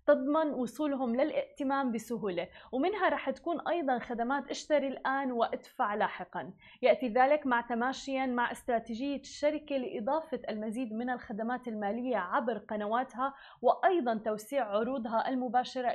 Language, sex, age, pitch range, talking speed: Arabic, female, 20-39, 240-290 Hz, 115 wpm